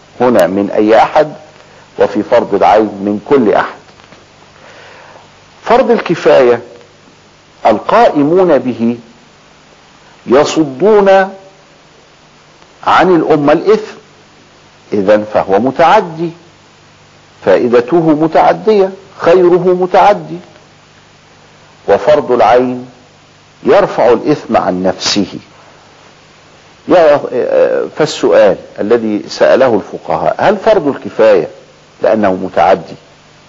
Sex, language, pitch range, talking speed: male, Arabic, 120-195 Hz, 70 wpm